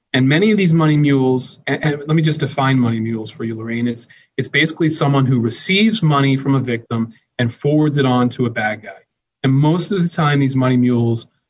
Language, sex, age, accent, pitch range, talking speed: English, male, 30-49, American, 120-145 Hz, 220 wpm